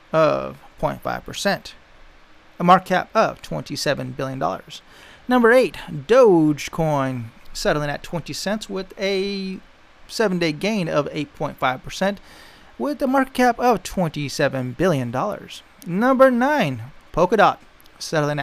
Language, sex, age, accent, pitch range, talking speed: English, male, 30-49, American, 145-230 Hz, 105 wpm